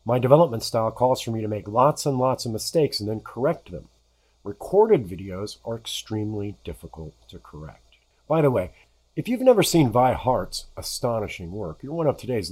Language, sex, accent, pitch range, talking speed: English, male, American, 90-135 Hz, 185 wpm